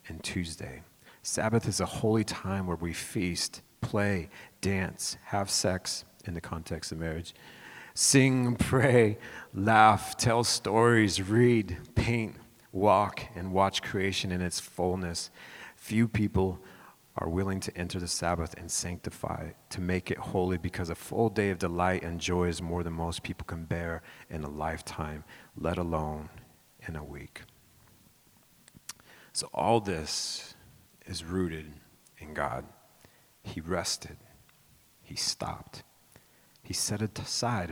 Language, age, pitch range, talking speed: English, 40-59, 85-110 Hz, 135 wpm